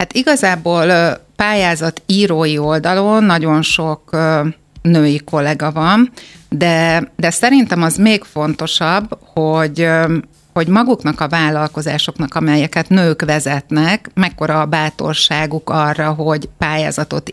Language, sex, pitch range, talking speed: Hungarian, female, 155-180 Hz, 105 wpm